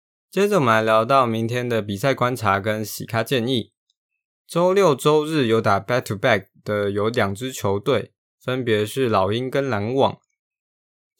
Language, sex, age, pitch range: Chinese, male, 20-39, 100-130 Hz